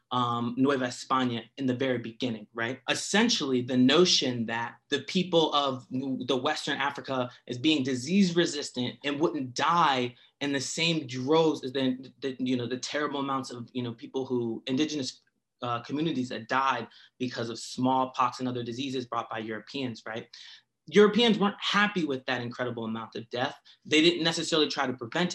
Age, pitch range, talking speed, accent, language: 20-39, 125-150 Hz, 170 wpm, American, English